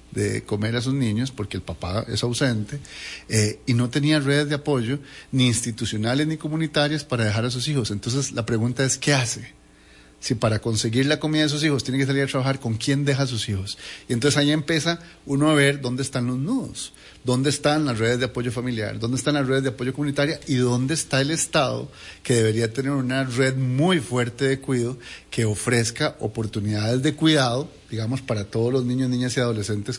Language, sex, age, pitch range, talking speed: English, male, 40-59, 115-145 Hz, 205 wpm